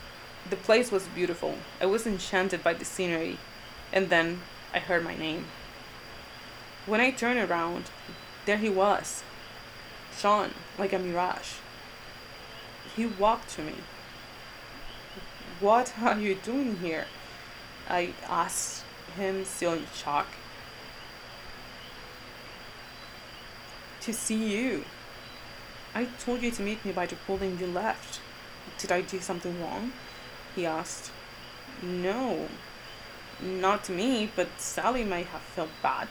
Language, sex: Japanese, female